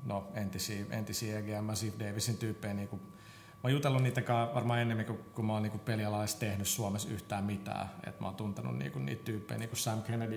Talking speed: 175 wpm